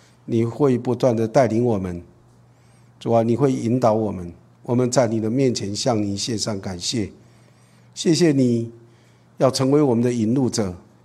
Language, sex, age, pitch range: Chinese, male, 50-69, 110-135 Hz